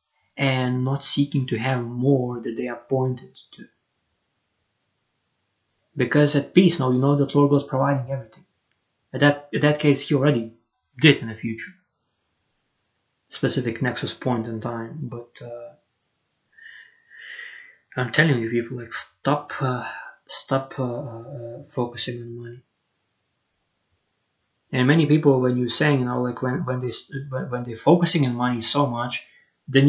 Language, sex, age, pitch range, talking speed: English, male, 20-39, 120-155 Hz, 150 wpm